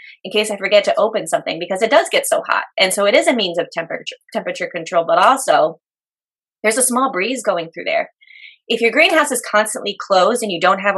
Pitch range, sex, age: 185-270 Hz, female, 20-39